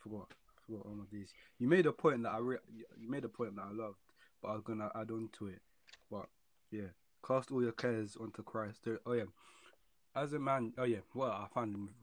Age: 20-39